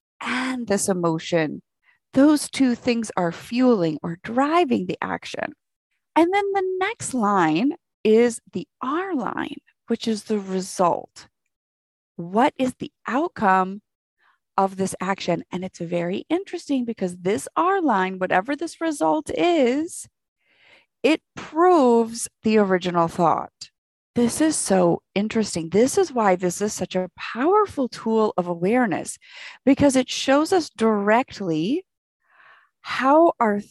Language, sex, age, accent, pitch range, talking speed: English, female, 30-49, American, 185-285 Hz, 125 wpm